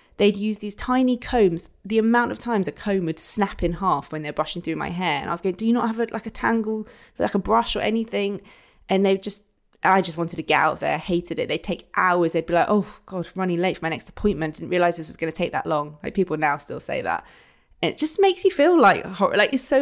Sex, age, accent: female, 20-39, British